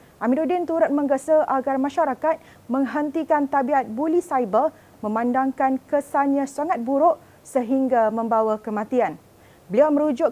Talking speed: 105 wpm